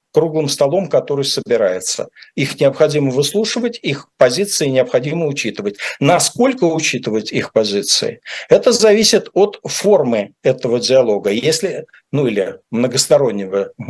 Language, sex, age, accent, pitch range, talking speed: Russian, male, 50-69, native, 140-195 Hz, 110 wpm